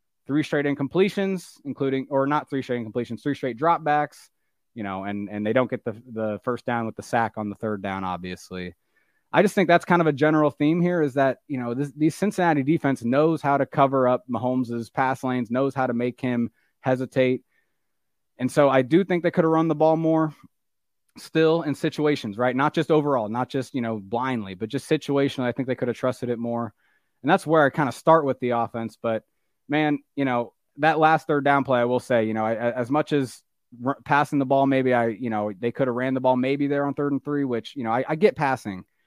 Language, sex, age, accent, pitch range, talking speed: English, male, 30-49, American, 115-145 Hz, 235 wpm